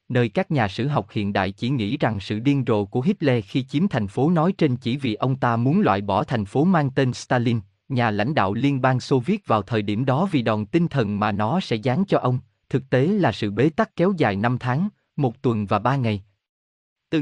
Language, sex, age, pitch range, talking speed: Vietnamese, male, 20-39, 110-150 Hz, 245 wpm